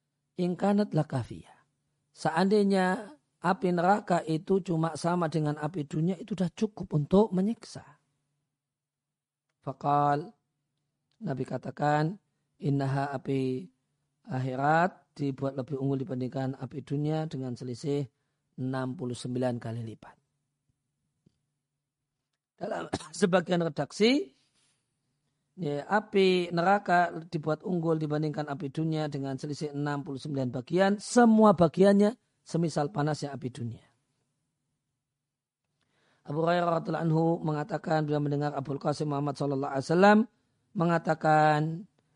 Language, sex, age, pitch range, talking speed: Indonesian, male, 40-59, 140-170 Hz, 90 wpm